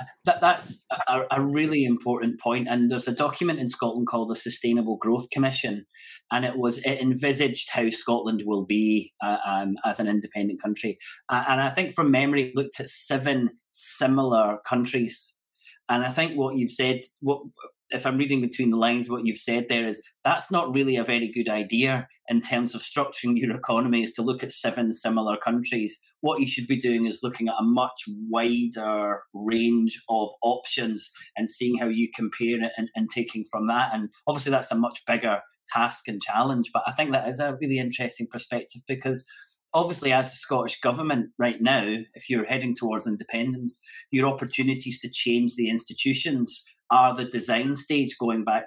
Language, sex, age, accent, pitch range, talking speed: English, male, 30-49, British, 115-135 Hz, 185 wpm